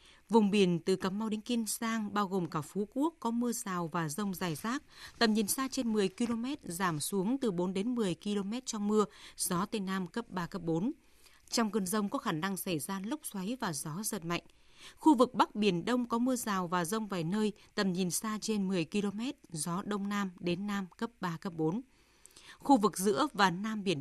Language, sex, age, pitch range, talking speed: Vietnamese, female, 20-39, 180-230 Hz, 220 wpm